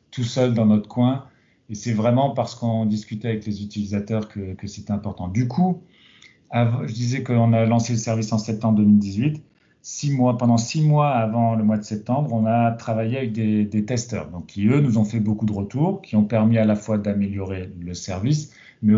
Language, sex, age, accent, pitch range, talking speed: French, male, 40-59, French, 105-125 Hz, 205 wpm